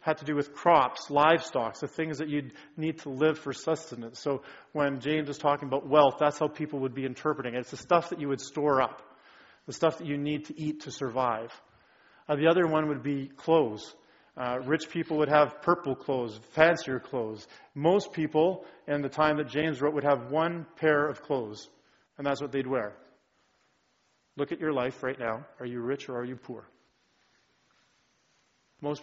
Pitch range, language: 130-155 Hz, English